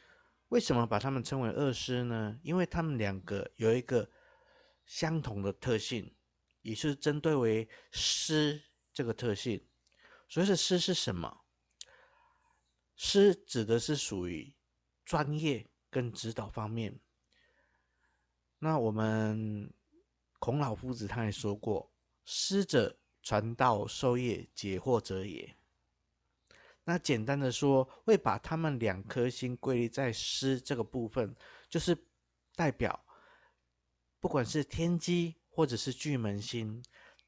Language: Chinese